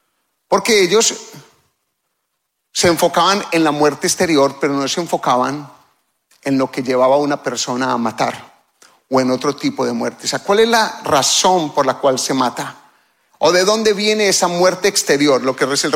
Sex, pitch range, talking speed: male, 140-200 Hz, 185 wpm